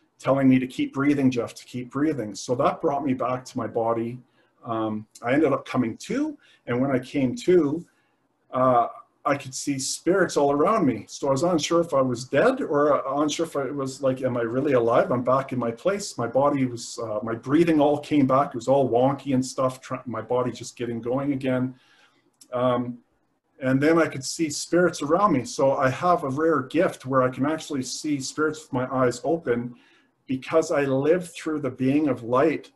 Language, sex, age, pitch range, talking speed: English, male, 40-59, 125-145 Hz, 210 wpm